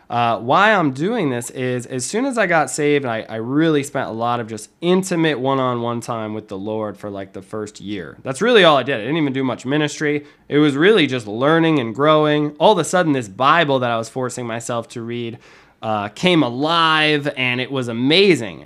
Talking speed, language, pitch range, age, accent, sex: 220 wpm, English, 115-150 Hz, 20-39, American, male